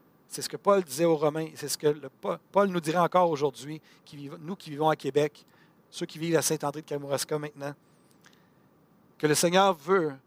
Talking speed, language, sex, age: 200 wpm, French, male, 60-79